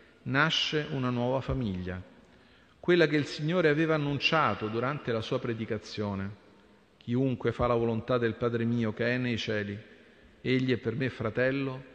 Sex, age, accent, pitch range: male, 40-59, native, 105-140 Hz